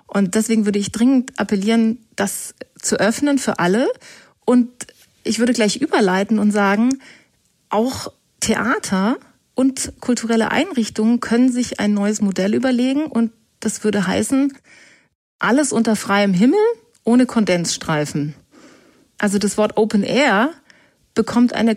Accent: German